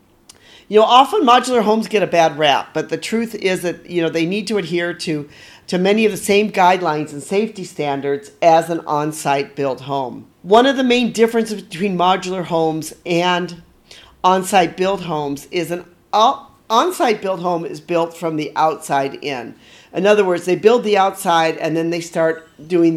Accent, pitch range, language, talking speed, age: American, 160-200 Hz, English, 185 wpm, 40-59